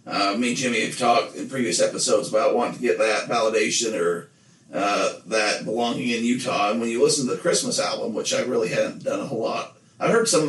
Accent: American